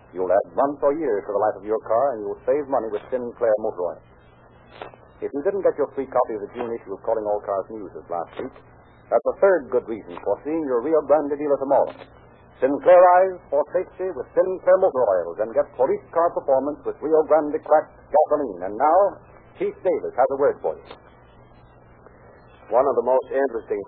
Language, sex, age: English, male, 60-79